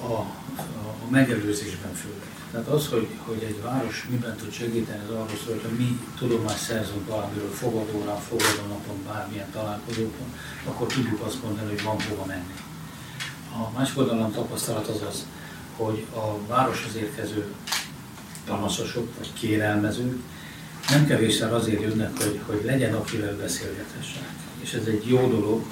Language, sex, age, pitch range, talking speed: Hungarian, male, 60-79, 105-115 Hz, 140 wpm